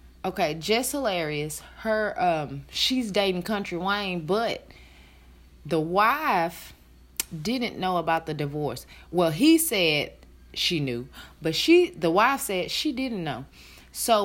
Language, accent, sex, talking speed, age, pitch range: English, American, female, 130 wpm, 30-49, 160-240 Hz